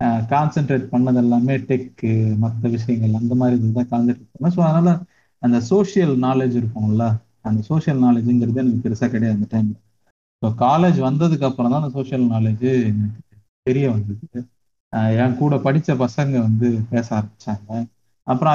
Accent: native